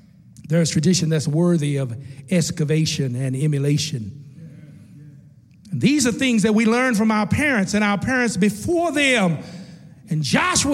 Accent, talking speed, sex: American, 140 wpm, male